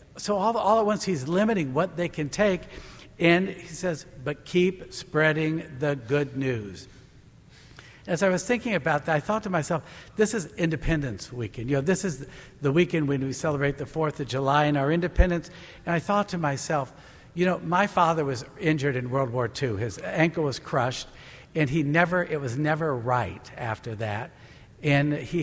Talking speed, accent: 190 wpm, American